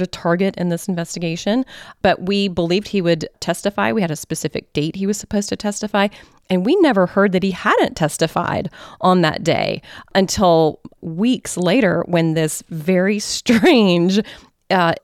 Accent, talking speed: American, 160 wpm